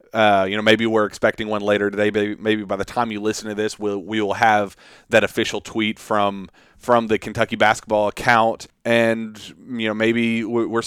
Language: English